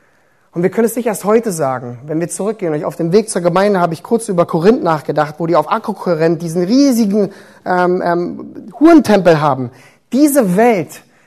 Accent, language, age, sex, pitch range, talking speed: German, German, 30-49, male, 160-230 Hz, 180 wpm